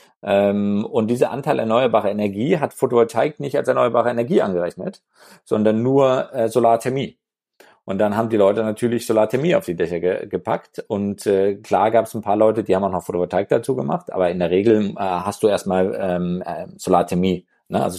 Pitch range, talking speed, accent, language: 90-110 Hz, 175 wpm, German, German